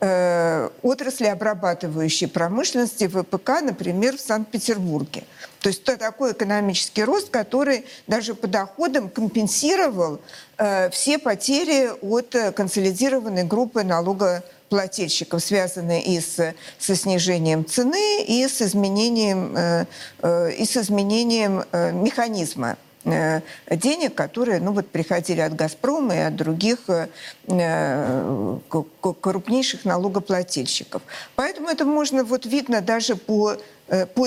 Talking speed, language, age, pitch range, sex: 95 wpm, Russian, 50-69, 180-250 Hz, female